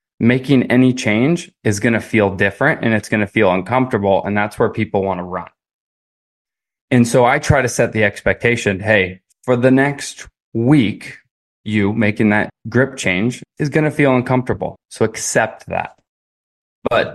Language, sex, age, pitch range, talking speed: English, male, 20-39, 105-125 Hz, 170 wpm